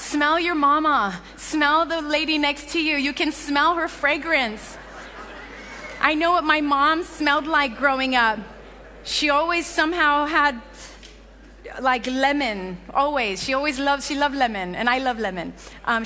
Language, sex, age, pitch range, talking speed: English, female, 30-49, 240-295 Hz, 155 wpm